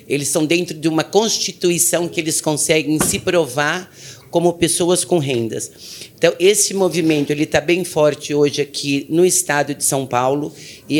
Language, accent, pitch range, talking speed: Portuguese, Brazilian, 140-165 Hz, 160 wpm